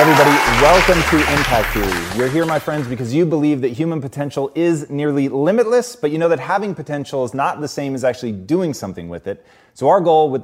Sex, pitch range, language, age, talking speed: male, 110-145 Hz, English, 30-49, 225 wpm